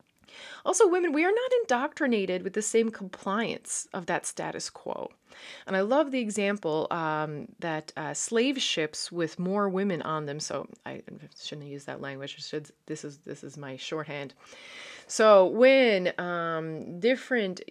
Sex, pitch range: female, 150-200 Hz